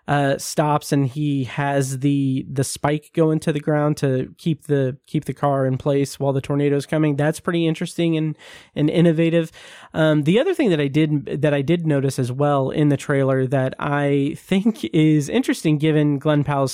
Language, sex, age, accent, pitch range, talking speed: English, male, 30-49, American, 140-165 Hz, 195 wpm